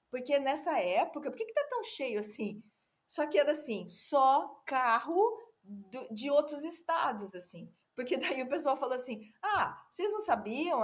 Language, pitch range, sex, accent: Portuguese, 235-350 Hz, female, Brazilian